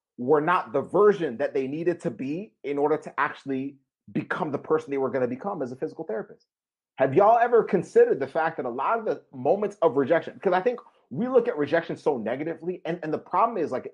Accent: American